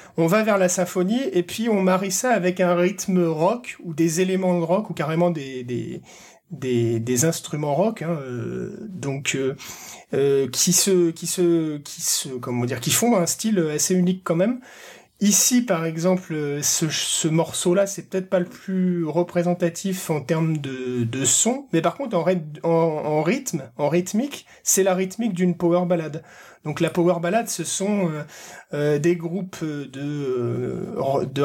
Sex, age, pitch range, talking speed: male, 30-49, 145-185 Hz, 175 wpm